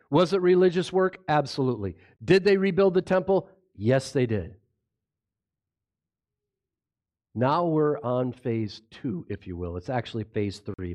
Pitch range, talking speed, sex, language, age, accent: 100-140 Hz, 135 wpm, male, English, 50-69, American